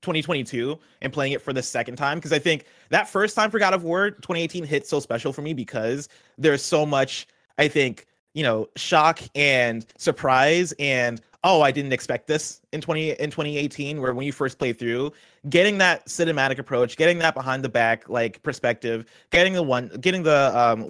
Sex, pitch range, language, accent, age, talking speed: male, 125-160 Hz, English, American, 30-49, 200 wpm